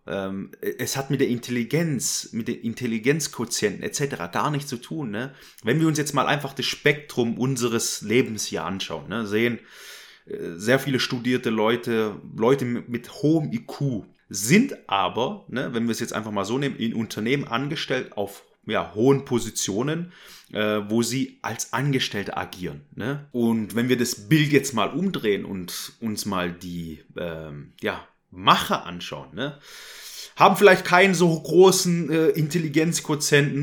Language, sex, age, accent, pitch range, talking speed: German, male, 30-49, German, 115-150 Hz, 145 wpm